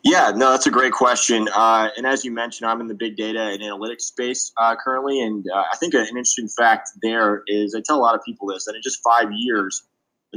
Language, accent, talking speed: English, American, 250 wpm